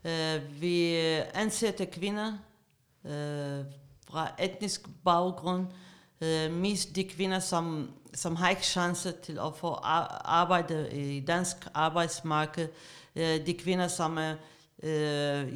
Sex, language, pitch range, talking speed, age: female, Danish, 150-180 Hz, 120 wpm, 50-69